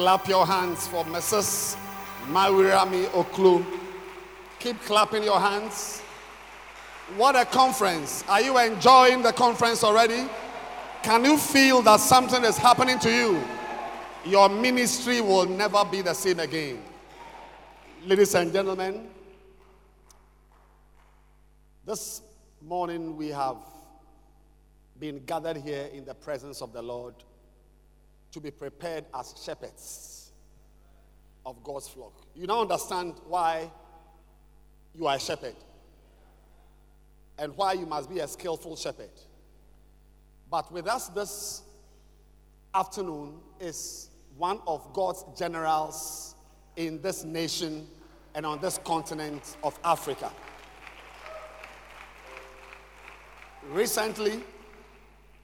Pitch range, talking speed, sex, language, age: 160-210 Hz, 105 wpm, male, English, 50-69